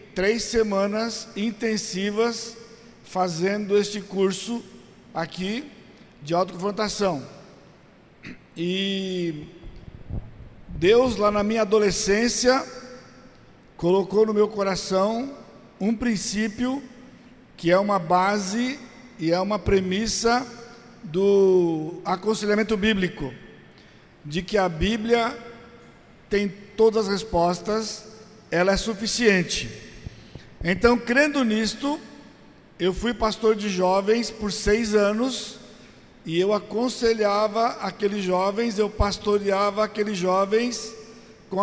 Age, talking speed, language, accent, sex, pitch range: 60-79, 90 wpm, Portuguese, Brazilian, male, 190-225 Hz